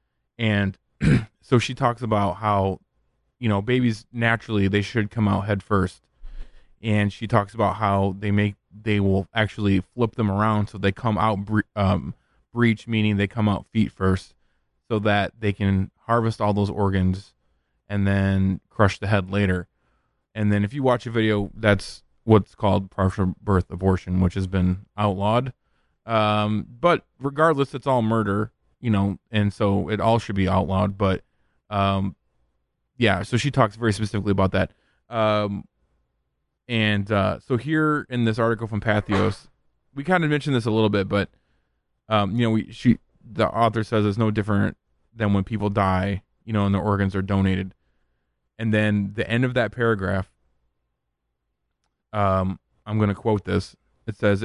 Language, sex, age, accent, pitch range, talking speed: English, male, 20-39, American, 95-110 Hz, 170 wpm